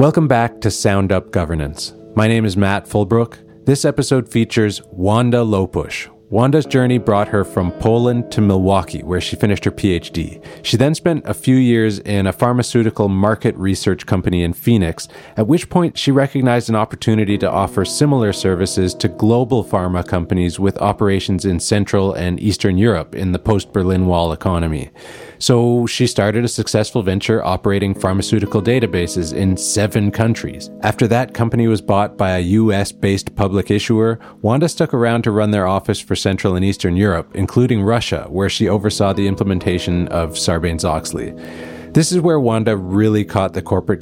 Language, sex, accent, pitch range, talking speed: English, male, American, 90-115 Hz, 165 wpm